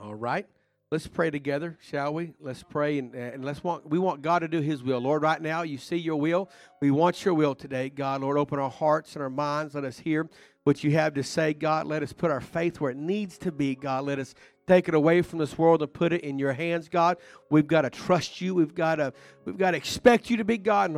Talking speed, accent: 265 wpm, American